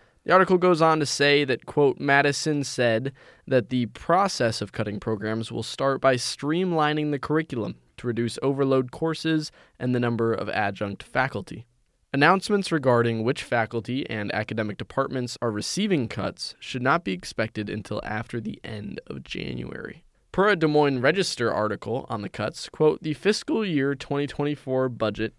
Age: 20-39